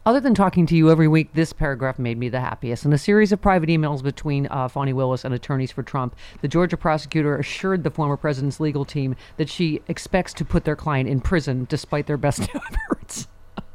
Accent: American